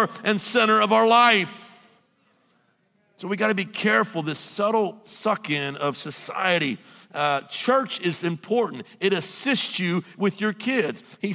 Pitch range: 175-215 Hz